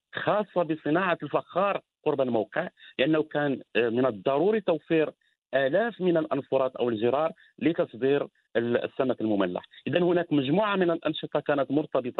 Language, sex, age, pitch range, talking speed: Arabic, male, 50-69, 135-175 Hz, 130 wpm